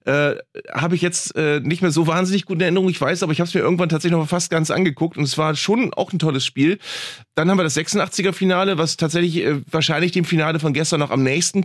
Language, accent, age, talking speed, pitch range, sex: German, German, 30-49, 250 wpm, 145-175 Hz, male